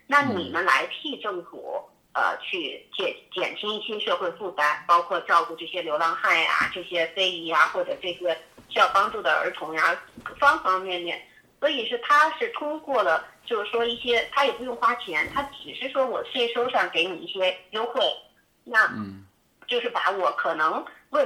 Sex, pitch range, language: female, 185-285 Hz, Chinese